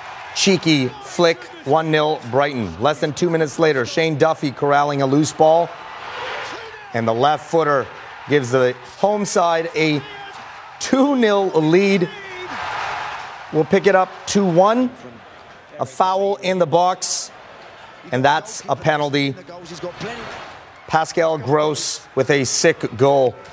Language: English